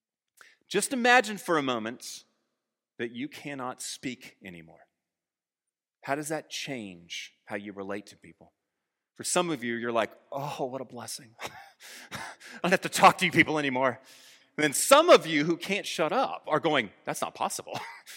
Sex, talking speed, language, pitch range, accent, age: male, 170 wpm, English, 120-185 Hz, American, 30-49